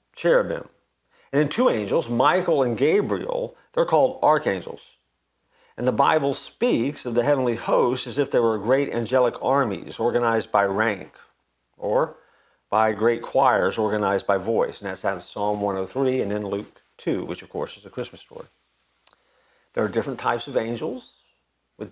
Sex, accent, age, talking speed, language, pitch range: male, American, 50-69, 165 wpm, English, 100-130 Hz